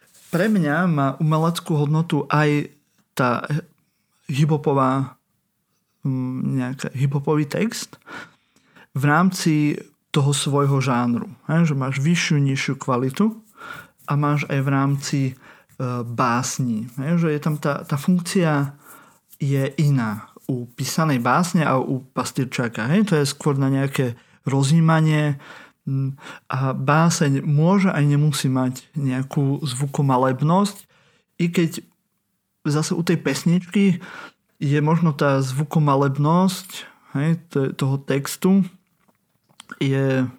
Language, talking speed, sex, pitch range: Slovak, 100 wpm, male, 135-165 Hz